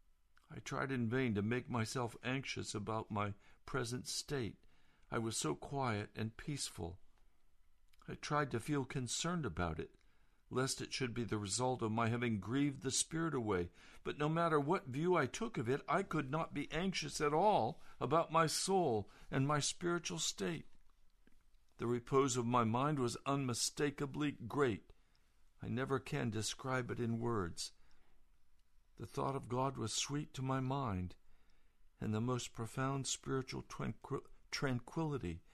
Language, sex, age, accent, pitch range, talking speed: English, male, 60-79, American, 95-135 Hz, 155 wpm